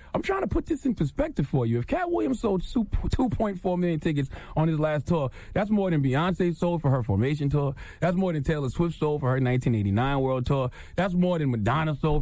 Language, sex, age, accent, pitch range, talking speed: English, male, 30-49, American, 115-185 Hz, 220 wpm